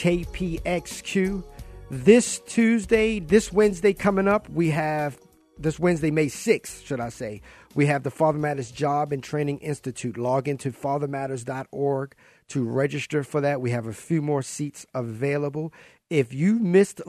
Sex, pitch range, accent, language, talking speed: male, 135-165 Hz, American, English, 160 wpm